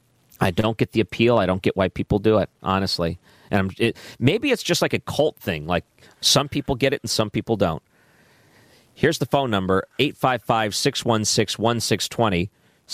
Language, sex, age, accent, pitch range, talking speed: English, male, 40-59, American, 100-140 Hz, 170 wpm